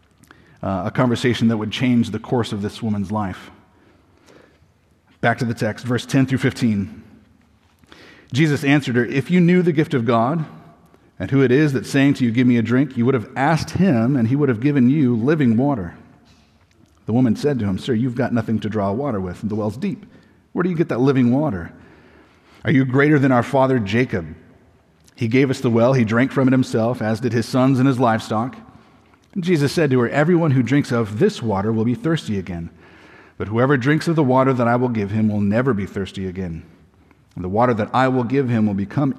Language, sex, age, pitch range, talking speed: English, male, 40-59, 105-135 Hz, 215 wpm